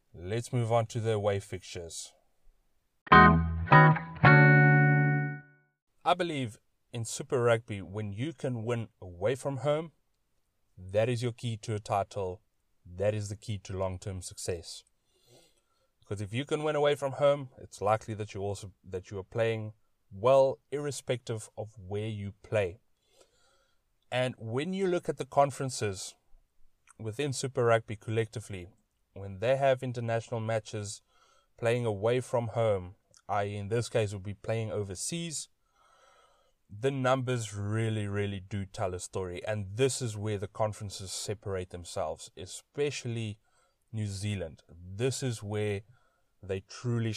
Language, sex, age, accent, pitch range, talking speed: English, male, 30-49, South African, 100-125 Hz, 135 wpm